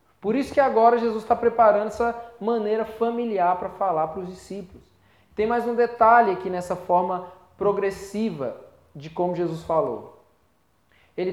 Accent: Brazilian